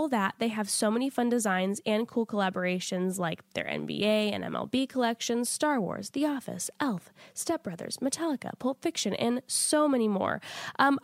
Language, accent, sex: English, American, female